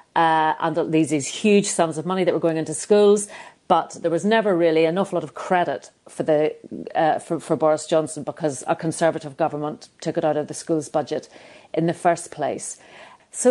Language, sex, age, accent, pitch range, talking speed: English, female, 40-59, British, 160-190 Hz, 200 wpm